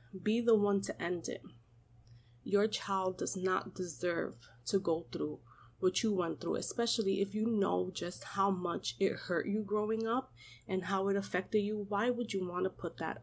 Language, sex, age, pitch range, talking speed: English, female, 20-39, 120-195 Hz, 190 wpm